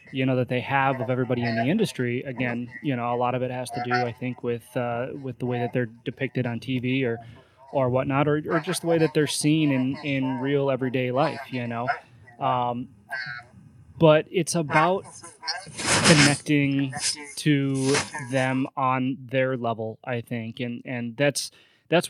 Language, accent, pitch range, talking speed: English, American, 120-140 Hz, 180 wpm